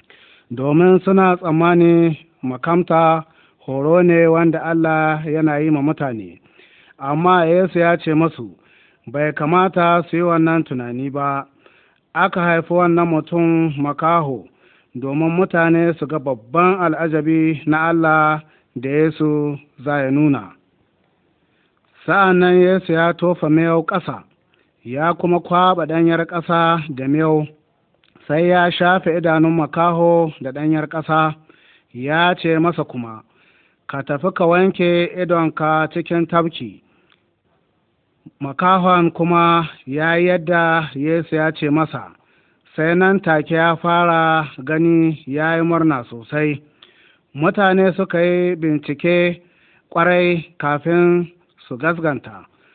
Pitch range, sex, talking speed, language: 150-175 Hz, male, 105 wpm, Arabic